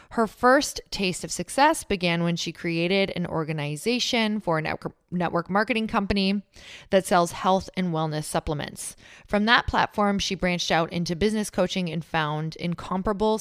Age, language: 20-39, English